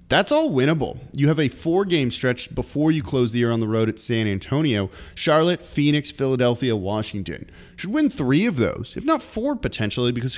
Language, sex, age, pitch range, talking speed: English, male, 30-49, 105-140 Hz, 190 wpm